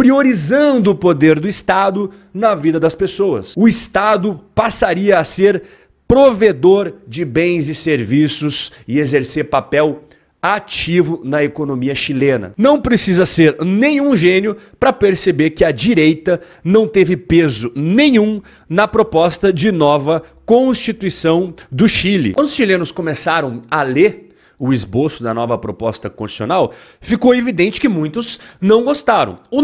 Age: 40-59